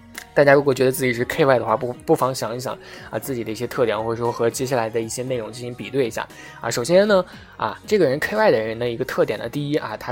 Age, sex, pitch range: 20-39, male, 115-155 Hz